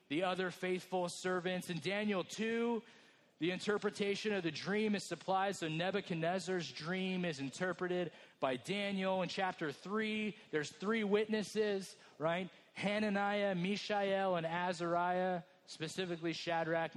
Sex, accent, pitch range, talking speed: male, American, 160-200 Hz, 120 wpm